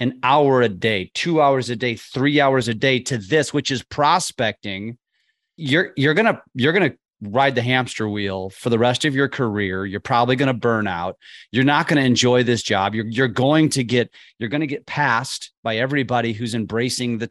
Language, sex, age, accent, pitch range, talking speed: English, male, 30-49, American, 115-145 Hz, 215 wpm